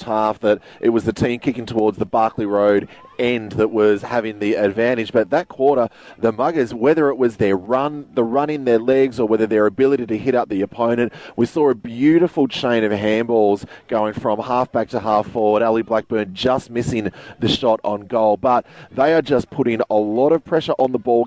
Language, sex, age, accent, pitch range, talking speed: English, male, 30-49, Australian, 110-135 Hz, 210 wpm